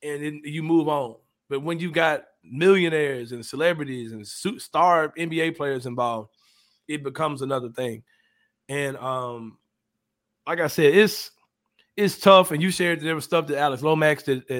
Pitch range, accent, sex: 120-145 Hz, American, male